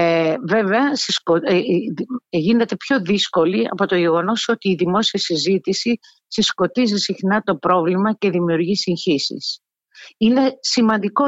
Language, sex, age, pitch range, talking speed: Greek, female, 50-69, 165-225 Hz, 105 wpm